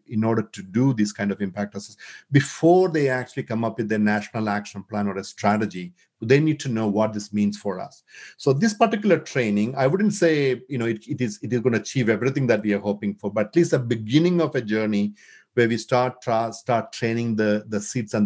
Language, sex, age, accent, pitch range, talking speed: English, male, 50-69, Indian, 110-150 Hz, 235 wpm